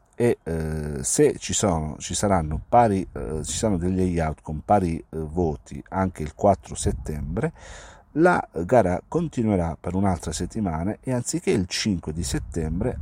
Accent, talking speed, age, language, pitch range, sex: native, 150 wpm, 50-69, Italian, 75-95 Hz, male